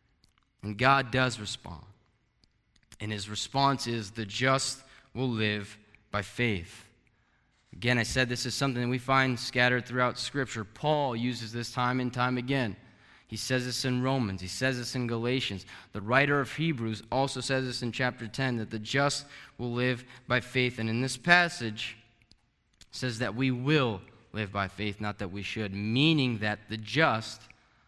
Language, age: English, 20-39